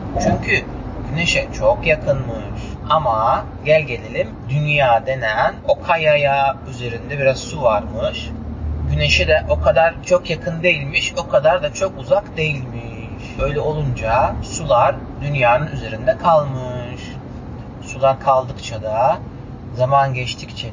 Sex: male